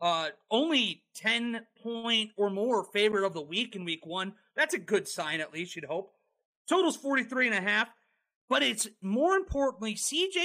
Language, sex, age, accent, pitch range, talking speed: English, male, 30-49, American, 200-280 Hz, 170 wpm